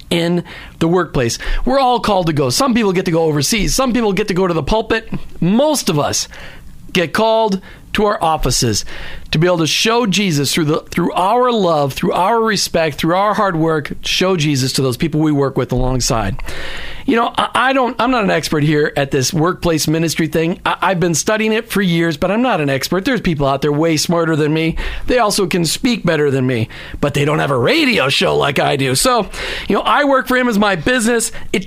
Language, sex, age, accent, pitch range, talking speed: English, male, 40-59, American, 155-215 Hz, 225 wpm